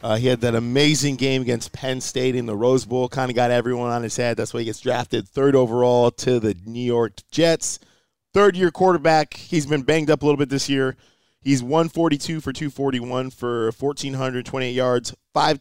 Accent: American